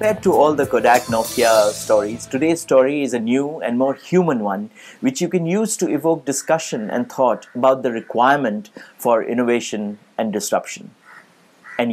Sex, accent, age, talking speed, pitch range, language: male, Indian, 60-79, 160 wpm, 120-160 Hz, English